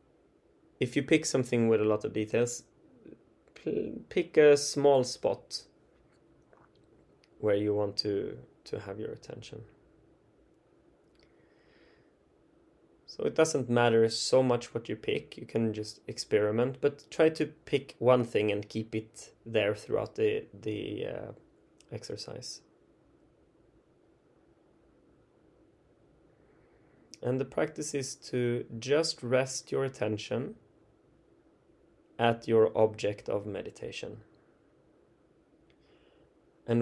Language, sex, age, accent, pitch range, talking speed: English, male, 20-39, Swedish, 110-130 Hz, 105 wpm